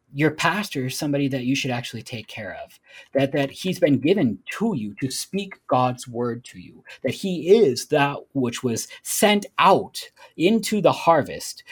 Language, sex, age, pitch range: English, male, 30-49, 125-165 Hz